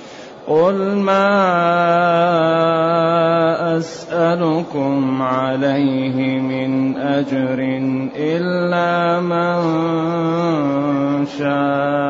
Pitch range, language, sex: 145-175 Hz, Arabic, male